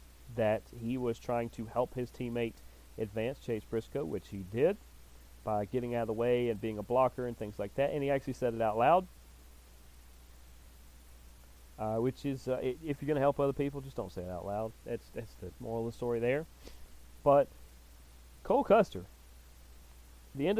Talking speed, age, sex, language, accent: 190 wpm, 30-49, male, English, American